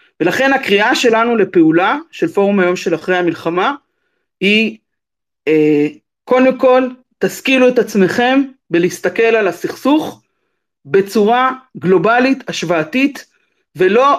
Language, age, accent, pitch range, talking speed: Hebrew, 40-59, native, 190-290 Hz, 95 wpm